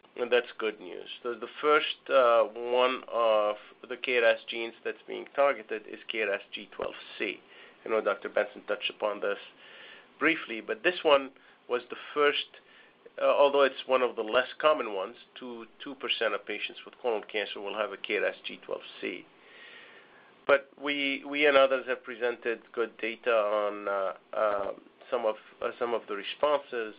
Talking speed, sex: 160 wpm, male